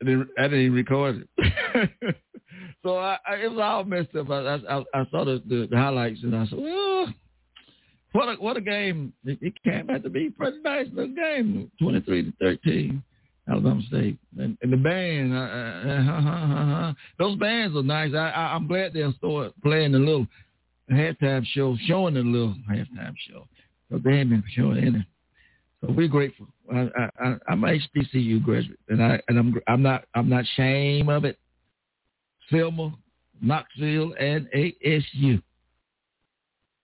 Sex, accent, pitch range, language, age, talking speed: male, American, 115-155 Hz, English, 60-79, 170 wpm